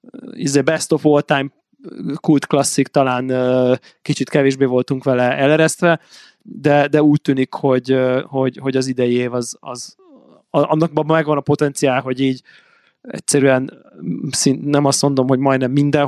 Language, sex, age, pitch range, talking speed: Hungarian, male, 20-39, 130-155 Hz, 125 wpm